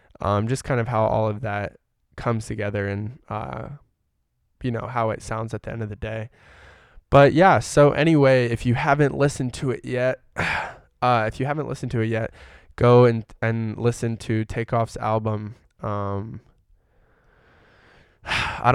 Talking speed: 165 wpm